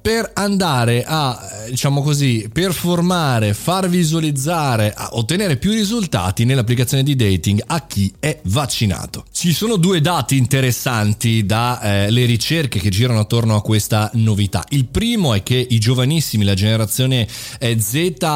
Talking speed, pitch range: 135 wpm, 110-150 Hz